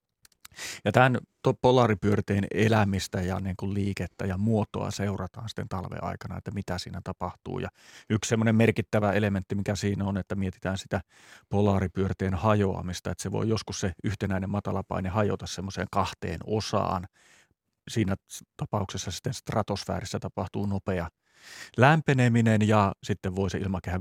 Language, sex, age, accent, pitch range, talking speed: Finnish, male, 30-49, native, 95-110 Hz, 130 wpm